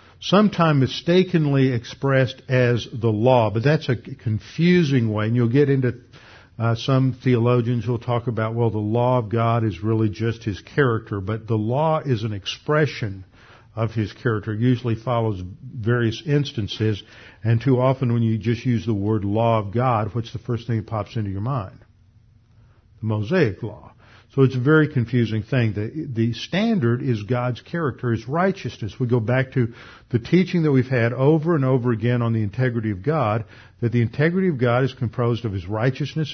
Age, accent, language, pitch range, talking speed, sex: 50-69, American, English, 110-130 Hz, 185 wpm, male